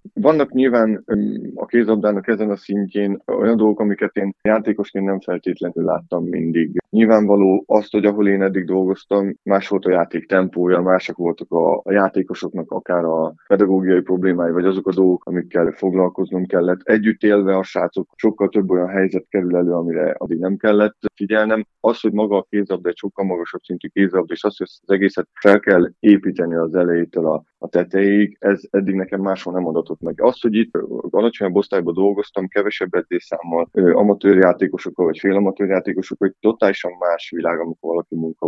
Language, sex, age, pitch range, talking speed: Hungarian, male, 20-39, 90-105 Hz, 165 wpm